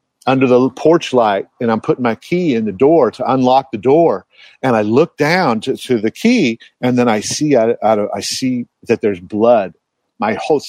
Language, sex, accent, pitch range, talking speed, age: English, male, American, 115-140 Hz, 200 wpm, 50-69